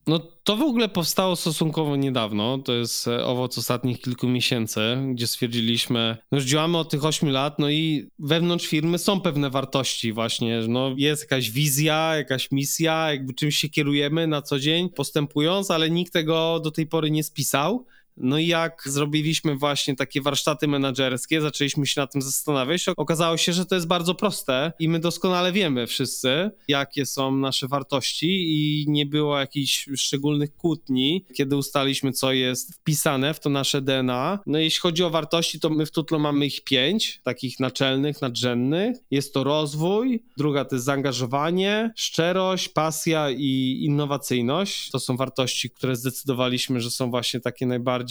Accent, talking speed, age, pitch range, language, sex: native, 165 wpm, 20-39, 130-165 Hz, Polish, male